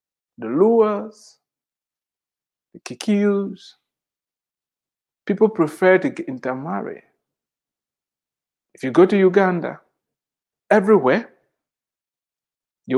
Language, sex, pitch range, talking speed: English, male, 140-195 Hz, 70 wpm